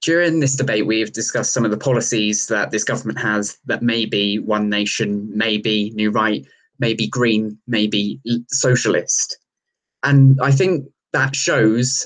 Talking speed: 155 wpm